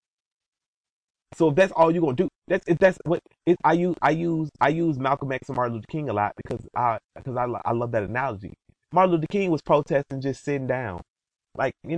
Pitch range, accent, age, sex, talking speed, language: 120-165 Hz, American, 30-49, male, 225 wpm, English